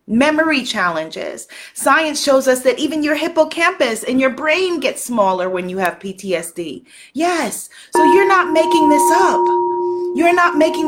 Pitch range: 270-355 Hz